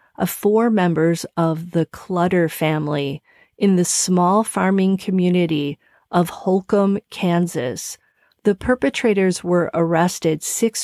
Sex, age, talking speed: female, 40-59, 110 wpm